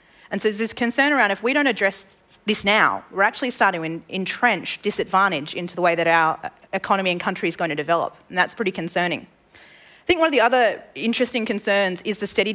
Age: 20-39